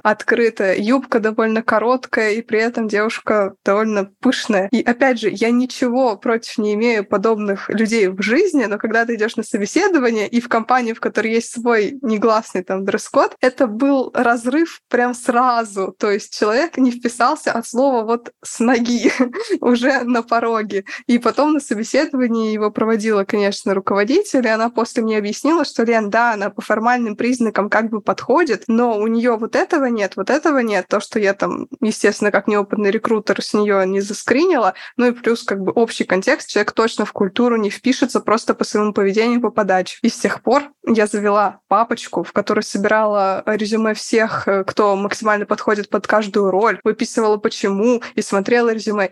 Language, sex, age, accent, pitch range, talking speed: Russian, female, 20-39, native, 210-245 Hz, 175 wpm